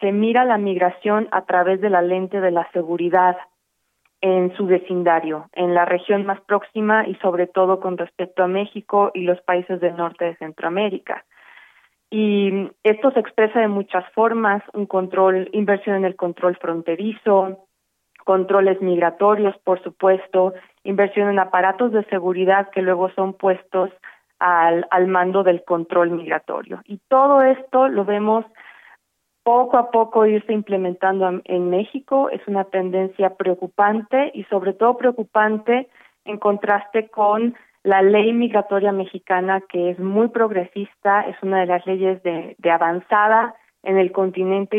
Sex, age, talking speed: female, 30-49, 145 wpm